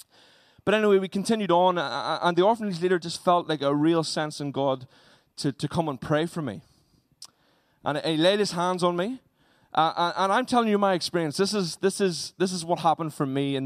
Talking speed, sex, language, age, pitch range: 210 wpm, male, English, 20-39, 150-190 Hz